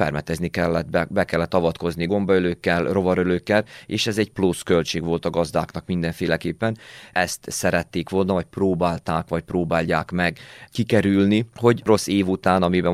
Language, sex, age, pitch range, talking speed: Hungarian, male, 30-49, 85-95 Hz, 145 wpm